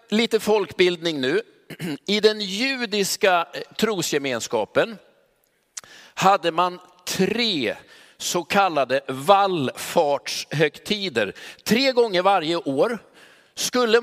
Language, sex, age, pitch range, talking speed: Swedish, male, 50-69, 170-230 Hz, 75 wpm